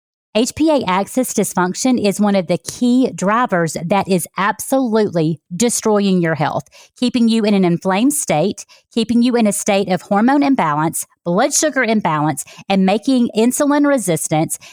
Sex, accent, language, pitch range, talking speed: female, American, English, 185-235 Hz, 145 wpm